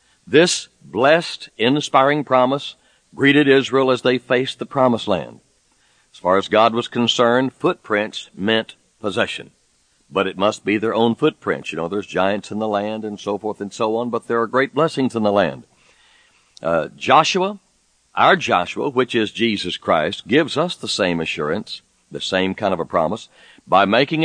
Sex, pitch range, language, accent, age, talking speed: male, 110-145 Hz, English, American, 60-79, 175 wpm